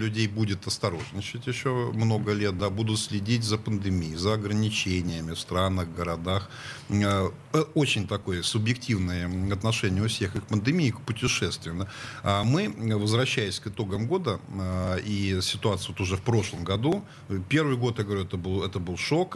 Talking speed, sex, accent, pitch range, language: 145 wpm, male, native, 95-115 Hz, Russian